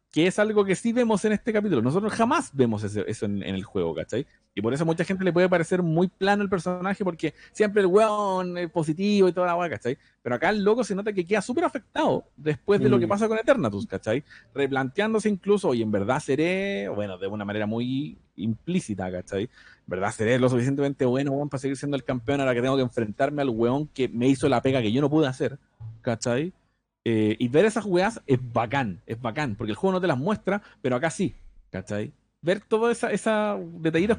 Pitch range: 125-195 Hz